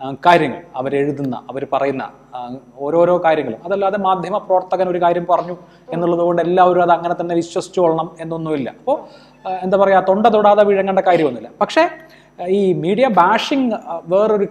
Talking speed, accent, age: 115 wpm, native, 30-49